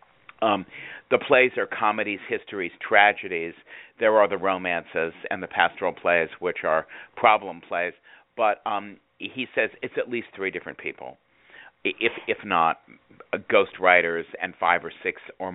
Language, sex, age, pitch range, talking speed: English, male, 50-69, 90-120 Hz, 155 wpm